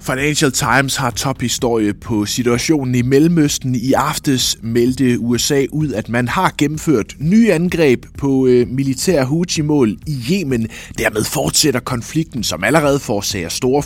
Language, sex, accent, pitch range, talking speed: Danish, male, native, 105-150 Hz, 145 wpm